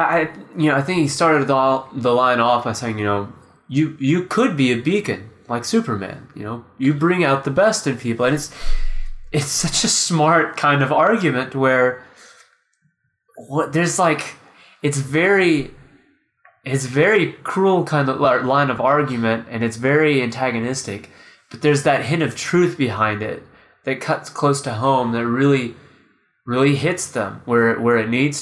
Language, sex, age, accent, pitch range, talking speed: English, male, 20-39, American, 115-150 Hz, 170 wpm